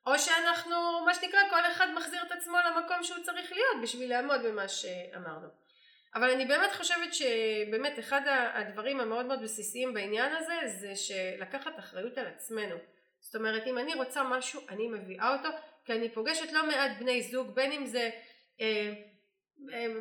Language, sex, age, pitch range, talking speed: Hebrew, female, 30-49, 220-275 Hz, 165 wpm